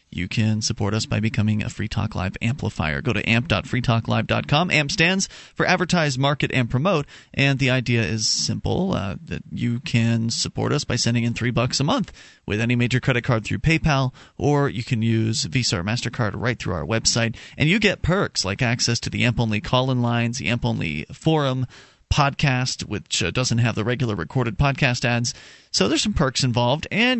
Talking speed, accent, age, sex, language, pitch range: 200 wpm, American, 30-49, male, English, 115-145 Hz